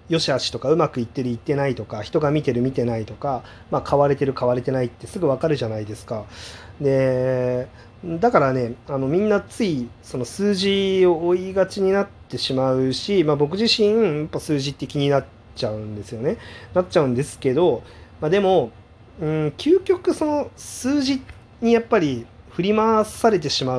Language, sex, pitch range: Japanese, male, 120-180 Hz